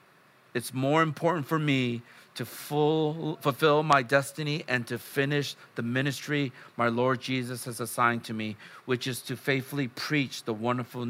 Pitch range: 120-150 Hz